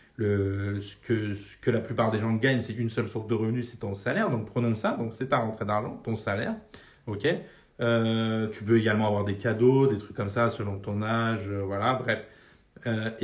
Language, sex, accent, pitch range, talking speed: French, male, French, 115-155 Hz, 215 wpm